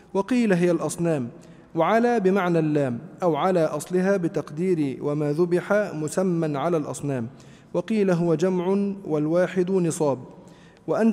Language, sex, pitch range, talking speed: Arabic, male, 155-195 Hz, 115 wpm